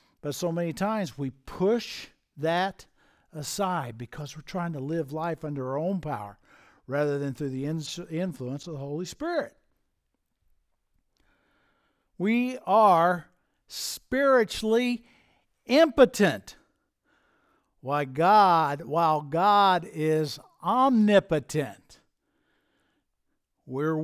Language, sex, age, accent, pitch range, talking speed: English, male, 60-79, American, 150-225 Hz, 90 wpm